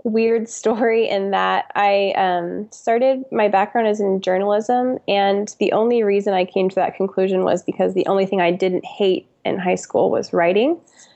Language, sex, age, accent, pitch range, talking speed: English, female, 20-39, American, 180-210 Hz, 185 wpm